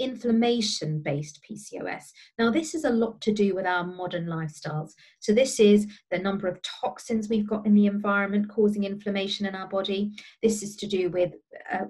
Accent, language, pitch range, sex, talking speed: British, English, 185-215 Hz, female, 180 wpm